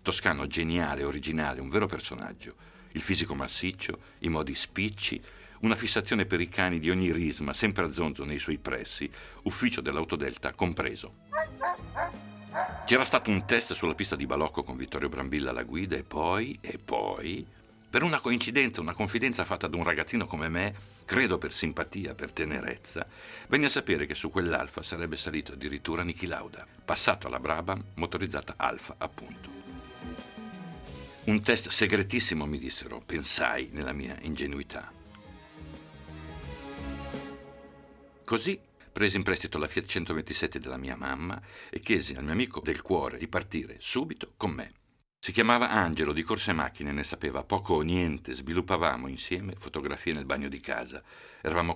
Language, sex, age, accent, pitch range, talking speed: Italian, male, 60-79, native, 75-105 Hz, 150 wpm